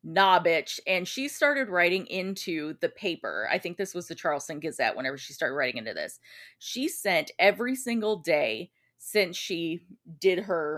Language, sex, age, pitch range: English, female, 30-49, 170-220 Hz